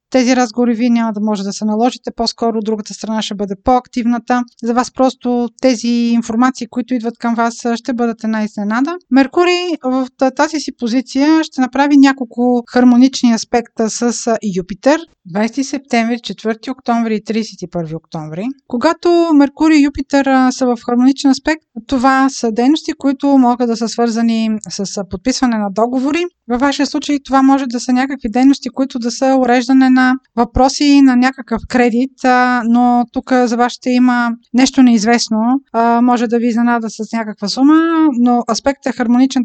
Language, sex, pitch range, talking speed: Bulgarian, female, 230-265 Hz, 155 wpm